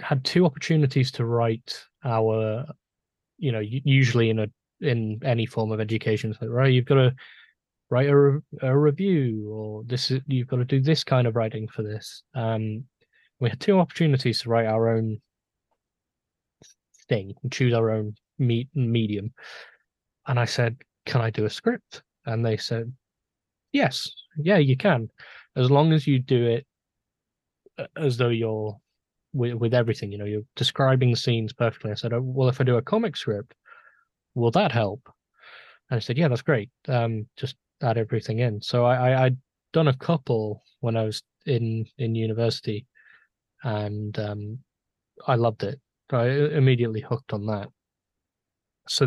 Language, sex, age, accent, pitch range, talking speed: English, male, 20-39, British, 110-135 Hz, 165 wpm